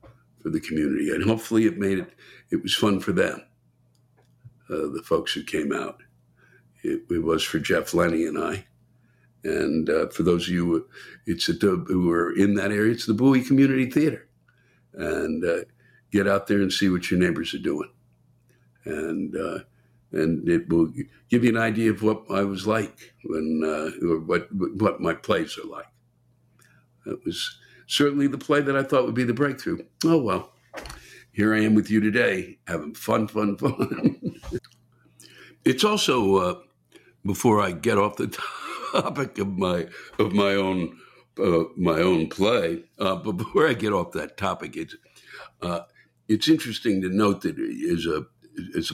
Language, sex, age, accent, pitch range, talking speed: English, male, 60-79, American, 95-125 Hz, 170 wpm